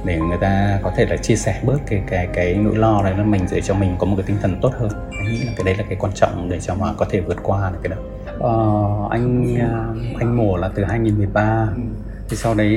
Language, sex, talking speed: Vietnamese, male, 255 wpm